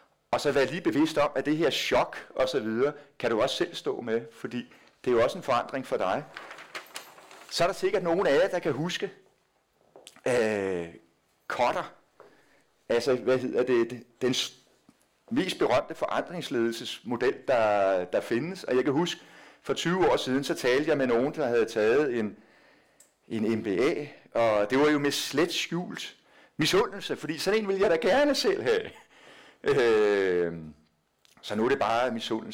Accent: native